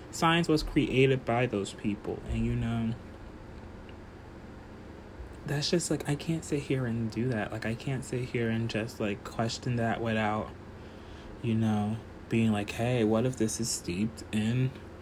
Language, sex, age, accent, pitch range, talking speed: English, male, 20-39, American, 105-120 Hz, 165 wpm